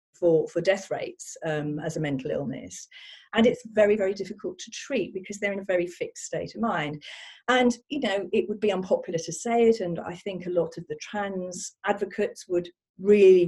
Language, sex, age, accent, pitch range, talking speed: English, female, 40-59, British, 165-220 Hz, 205 wpm